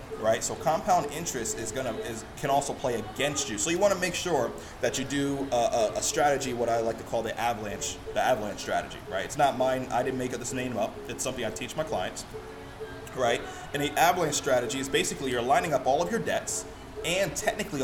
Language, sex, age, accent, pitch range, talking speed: English, male, 30-49, American, 110-140 Hz, 230 wpm